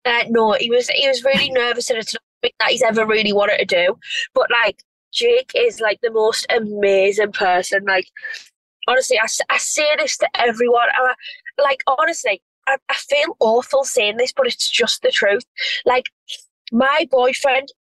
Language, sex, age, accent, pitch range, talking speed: English, female, 20-39, British, 255-340 Hz, 170 wpm